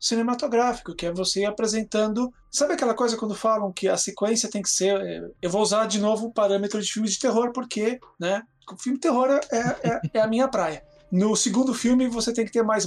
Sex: male